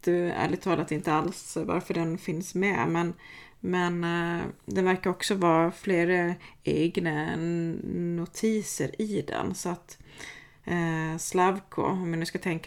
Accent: native